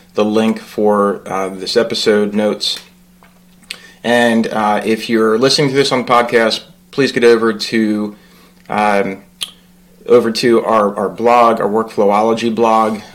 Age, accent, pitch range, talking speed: 30-49, American, 105-125 Hz, 130 wpm